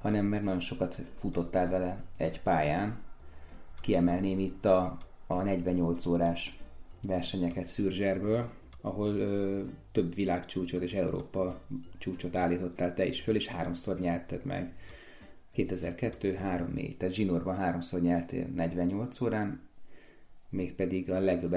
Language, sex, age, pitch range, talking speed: Hungarian, male, 30-49, 85-105 Hz, 115 wpm